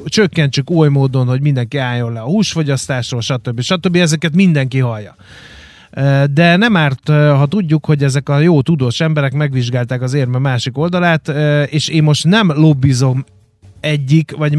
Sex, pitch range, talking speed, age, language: male, 125-155 Hz, 150 wpm, 30-49, Hungarian